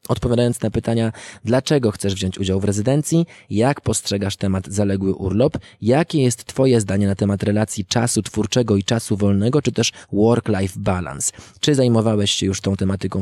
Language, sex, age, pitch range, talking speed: Polish, male, 20-39, 100-120 Hz, 165 wpm